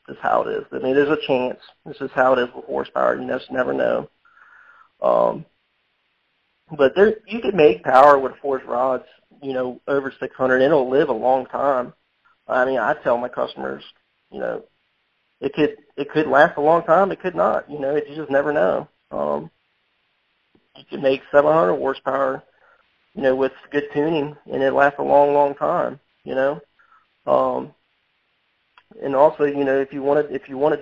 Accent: American